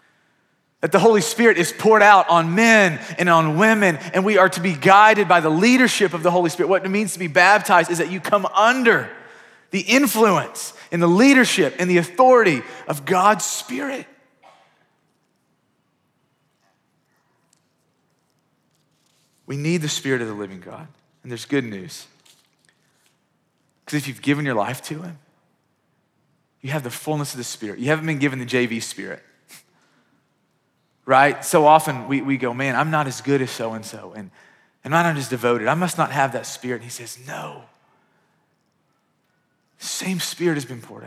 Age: 30-49